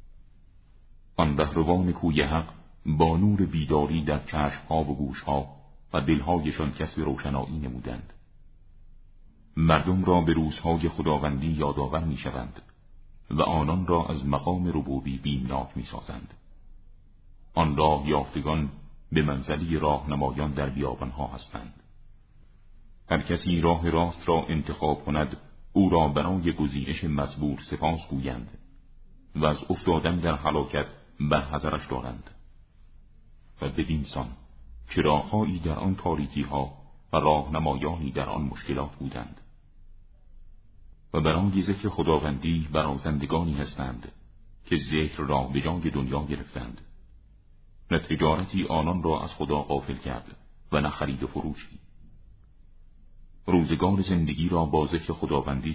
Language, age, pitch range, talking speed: Persian, 50-69, 70-85 Hz, 115 wpm